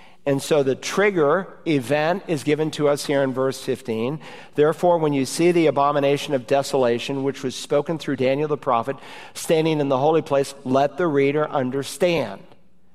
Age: 50-69